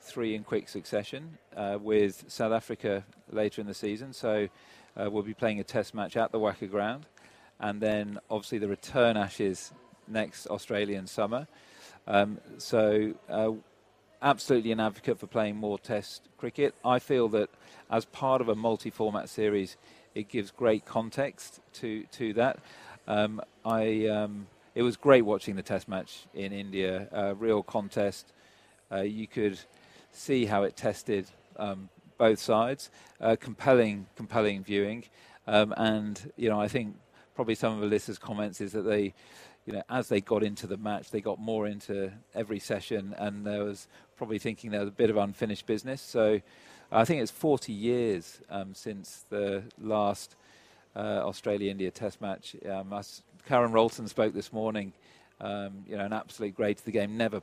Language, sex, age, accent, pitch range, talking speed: English, male, 40-59, British, 100-110 Hz, 170 wpm